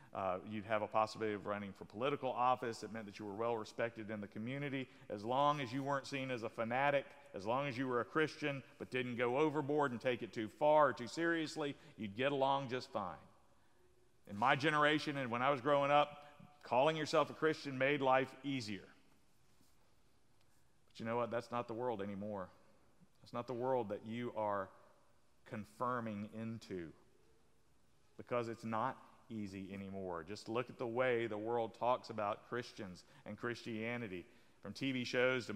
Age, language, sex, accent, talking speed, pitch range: 50-69, English, male, American, 180 wpm, 115-140 Hz